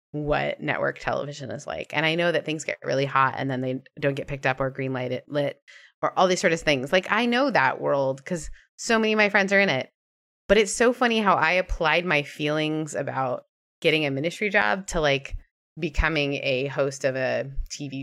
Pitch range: 140-185 Hz